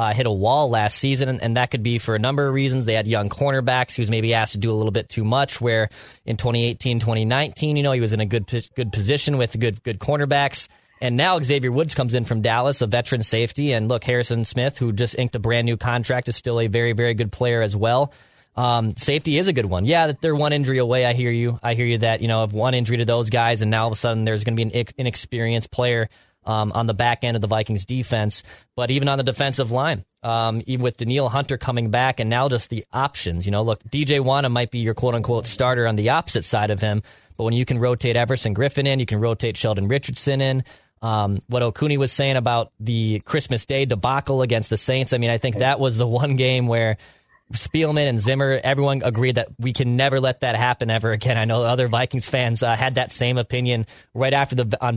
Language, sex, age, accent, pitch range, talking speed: English, male, 20-39, American, 115-130 Hz, 250 wpm